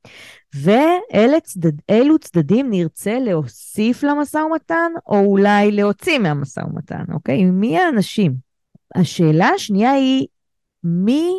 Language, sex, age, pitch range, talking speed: Hebrew, female, 20-39, 155-215 Hz, 100 wpm